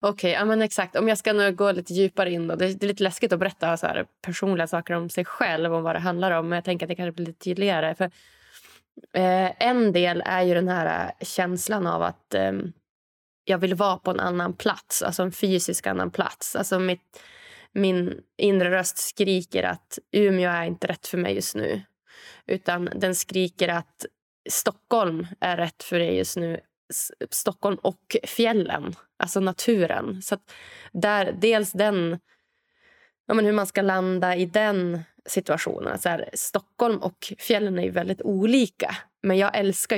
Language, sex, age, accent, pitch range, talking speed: Swedish, female, 20-39, native, 175-210 Hz, 185 wpm